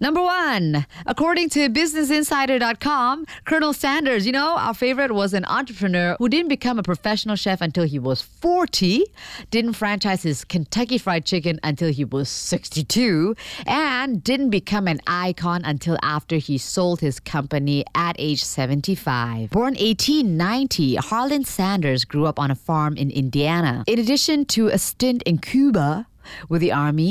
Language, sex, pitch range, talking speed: English, female, 155-240 Hz, 155 wpm